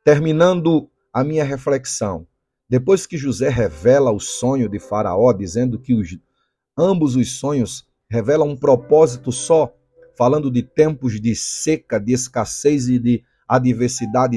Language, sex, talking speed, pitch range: Portuguese, male, 130 wpm, 125-160 Hz